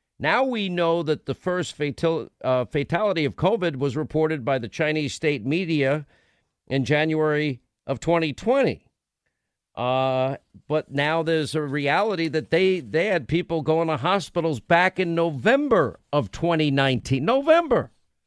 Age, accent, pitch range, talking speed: 50-69, American, 155-205 Hz, 135 wpm